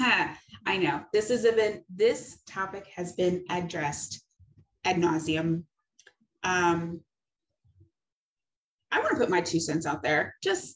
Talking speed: 130 wpm